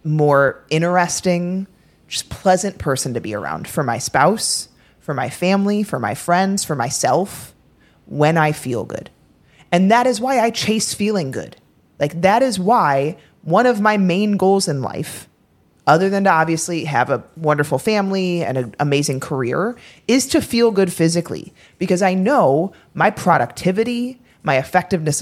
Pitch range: 140-195 Hz